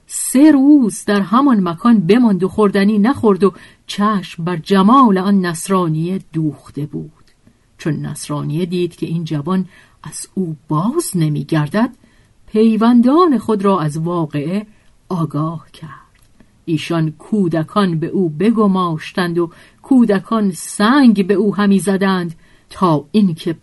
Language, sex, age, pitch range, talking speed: Persian, female, 50-69, 165-215 Hz, 120 wpm